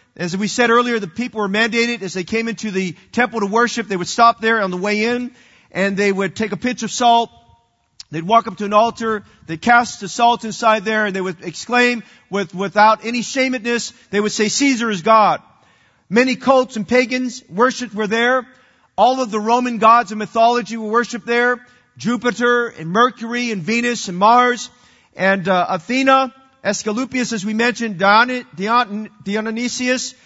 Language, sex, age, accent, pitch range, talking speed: English, male, 40-59, American, 205-245 Hz, 180 wpm